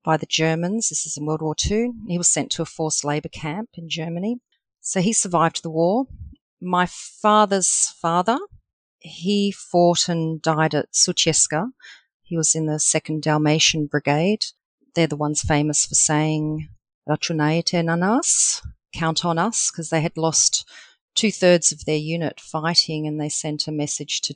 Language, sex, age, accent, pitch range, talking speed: English, female, 40-59, Australian, 155-195 Hz, 165 wpm